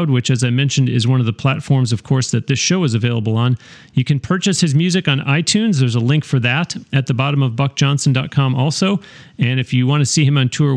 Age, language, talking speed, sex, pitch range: 40-59, English, 245 wpm, male, 125-150 Hz